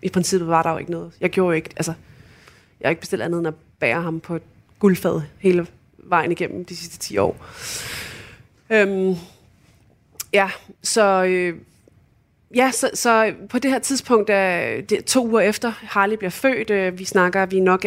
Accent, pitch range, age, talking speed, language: native, 160-205 Hz, 20-39, 175 wpm, Danish